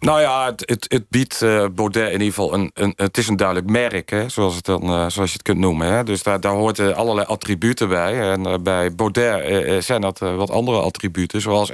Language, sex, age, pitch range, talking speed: Dutch, male, 40-59, 95-115 Hz, 220 wpm